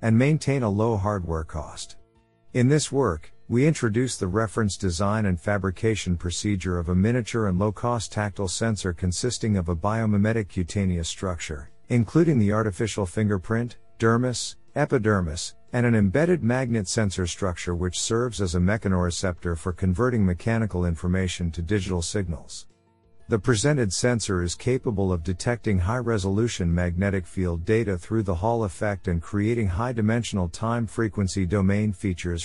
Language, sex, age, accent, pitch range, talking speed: English, male, 50-69, American, 90-115 Hz, 140 wpm